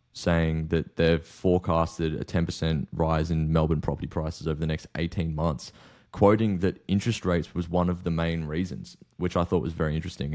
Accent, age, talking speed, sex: Australian, 20-39, 185 wpm, male